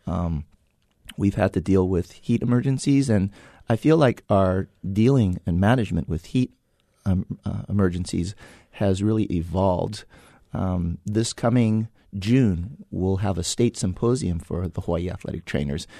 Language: English